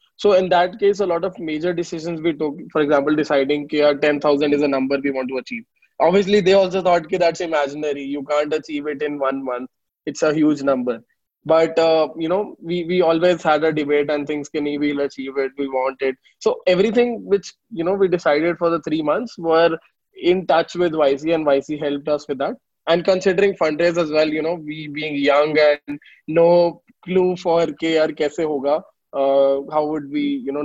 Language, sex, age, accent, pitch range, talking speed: English, male, 20-39, Indian, 140-175 Hz, 205 wpm